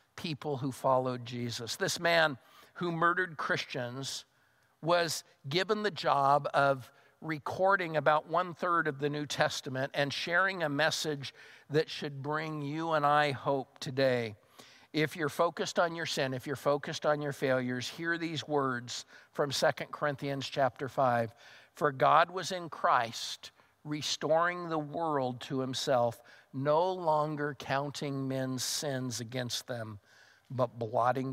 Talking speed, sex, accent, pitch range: 140 wpm, male, American, 130-155 Hz